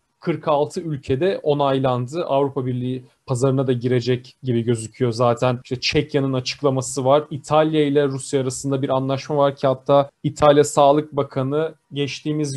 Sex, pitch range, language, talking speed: male, 135-160 Hz, Turkish, 135 wpm